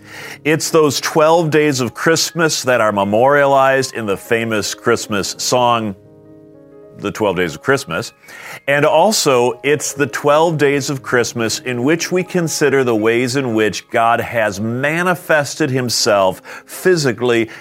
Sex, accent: male, American